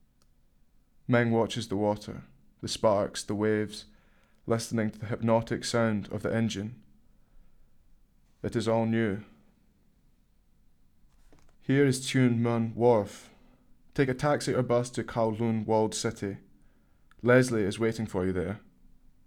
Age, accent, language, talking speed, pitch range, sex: 20-39, British, English, 125 wpm, 100-115 Hz, male